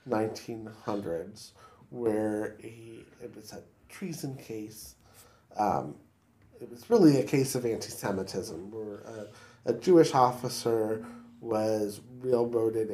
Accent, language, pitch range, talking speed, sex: American, English, 110-130 Hz, 110 wpm, male